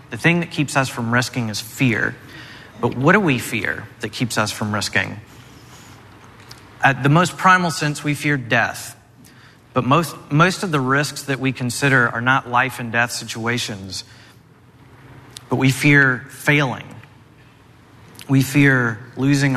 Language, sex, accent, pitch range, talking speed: English, male, American, 120-135 Hz, 150 wpm